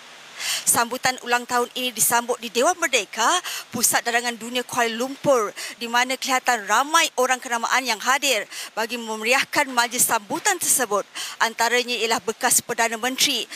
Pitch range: 235-280 Hz